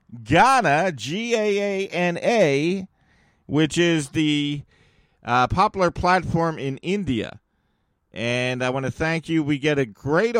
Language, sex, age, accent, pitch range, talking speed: English, male, 50-69, American, 125-170 Hz, 115 wpm